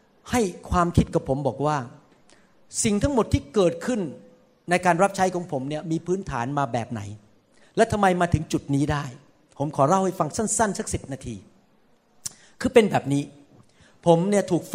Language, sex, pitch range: Thai, male, 145-210 Hz